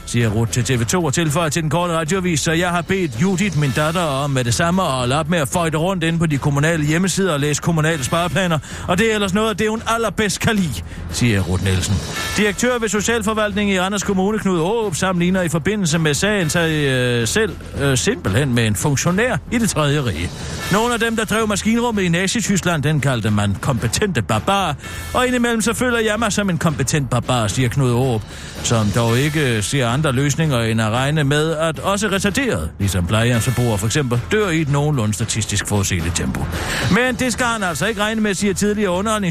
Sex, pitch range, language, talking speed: male, 115-190 Hz, Danish, 210 wpm